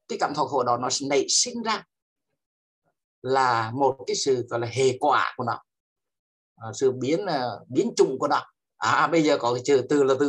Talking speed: 205 wpm